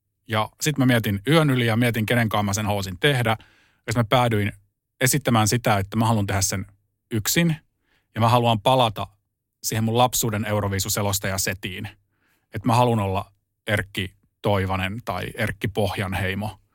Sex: male